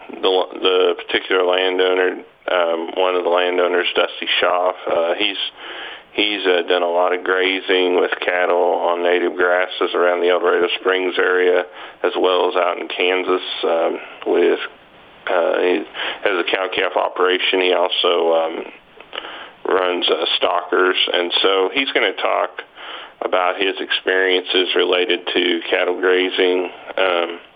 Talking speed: 140 wpm